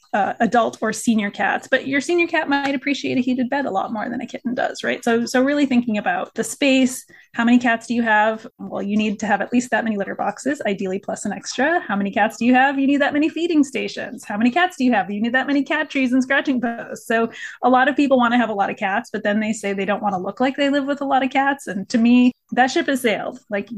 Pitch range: 210-265 Hz